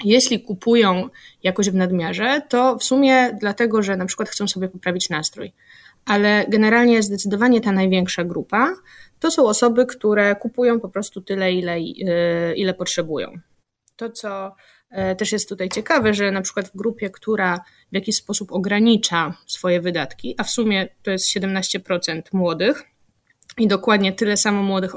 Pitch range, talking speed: 185-225 Hz, 150 wpm